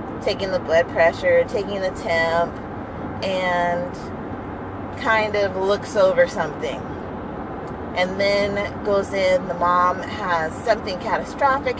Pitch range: 185-250 Hz